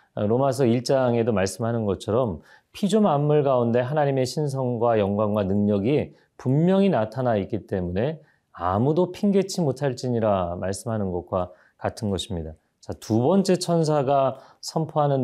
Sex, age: male, 30-49